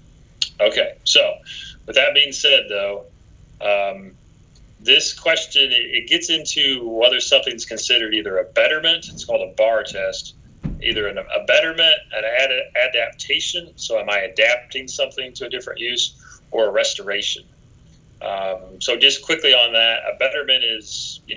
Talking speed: 150 wpm